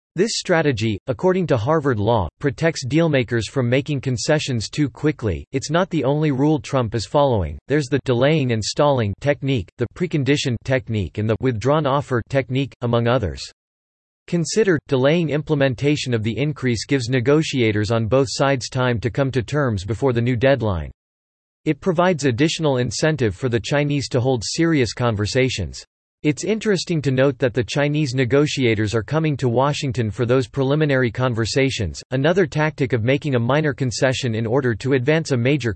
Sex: male